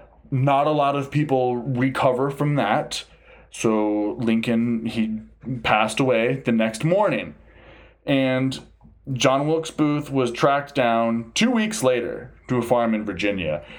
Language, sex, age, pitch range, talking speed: English, male, 20-39, 110-140 Hz, 135 wpm